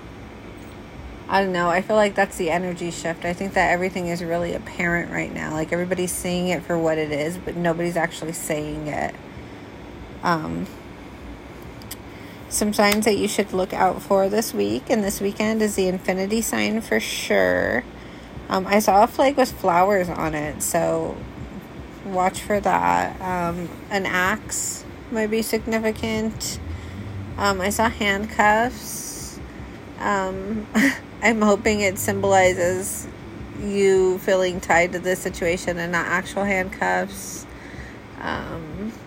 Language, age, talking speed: English, 30-49, 140 wpm